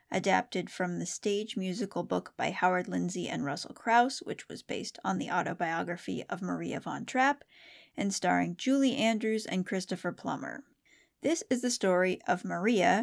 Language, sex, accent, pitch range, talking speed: English, female, American, 180-240 Hz, 160 wpm